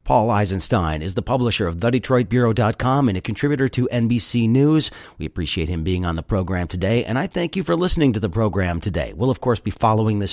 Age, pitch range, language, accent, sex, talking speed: 40-59, 90-125 Hz, English, American, male, 215 wpm